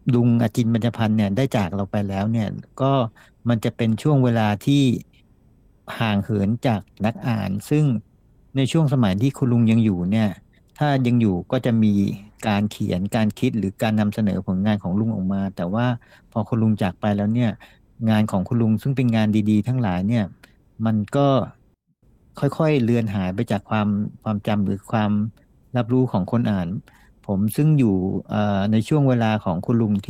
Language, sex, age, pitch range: Thai, male, 60-79, 105-125 Hz